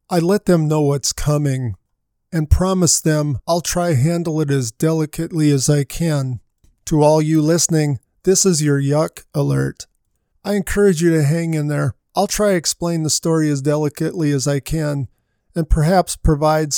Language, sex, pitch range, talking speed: English, male, 145-175 Hz, 170 wpm